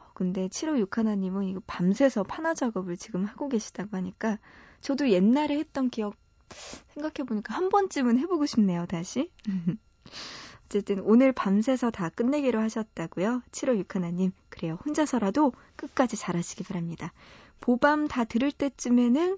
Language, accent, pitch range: Korean, native, 190-265 Hz